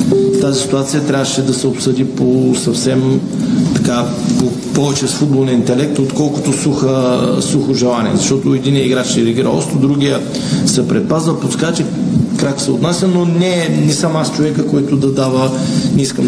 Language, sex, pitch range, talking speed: Bulgarian, male, 130-155 Hz, 145 wpm